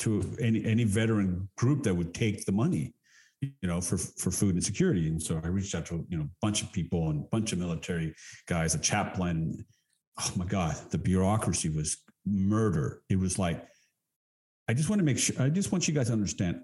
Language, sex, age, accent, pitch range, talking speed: English, male, 50-69, American, 85-115 Hz, 215 wpm